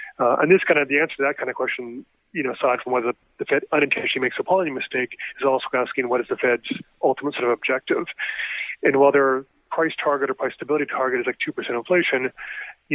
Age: 30-49